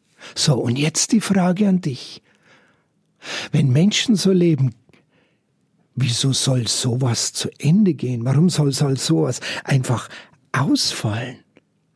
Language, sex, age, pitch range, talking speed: German, male, 60-79, 150-195 Hz, 115 wpm